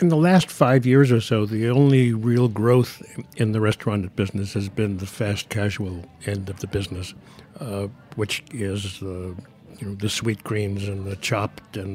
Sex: male